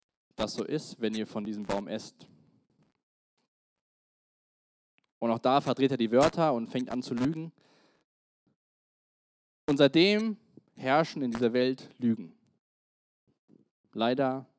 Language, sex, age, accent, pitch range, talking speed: German, male, 20-39, German, 125-170 Hz, 120 wpm